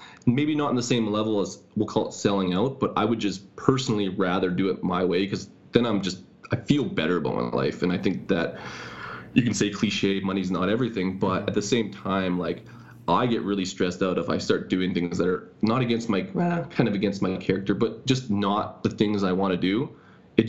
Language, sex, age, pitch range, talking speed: English, male, 20-39, 95-115 Hz, 230 wpm